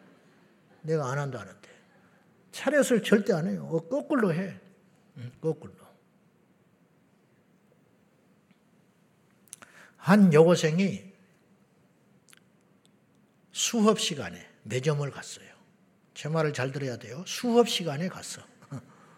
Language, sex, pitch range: Korean, male, 140-195 Hz